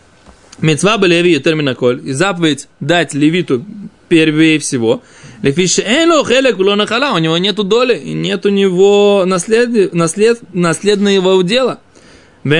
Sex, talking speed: male, 85 wpm